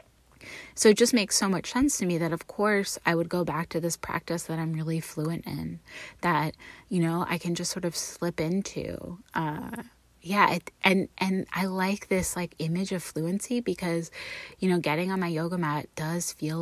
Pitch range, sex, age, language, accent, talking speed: 160-190 Hz, female, 20-39, English, American, 200 wpm